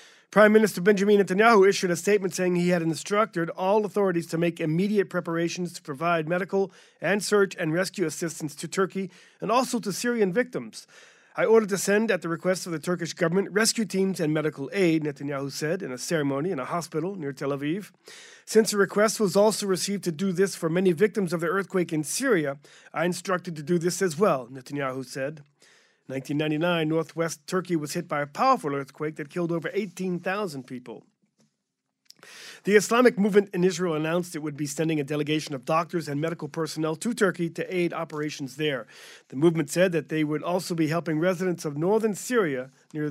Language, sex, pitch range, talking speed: English, male, 155-195 Hz, 190 wpm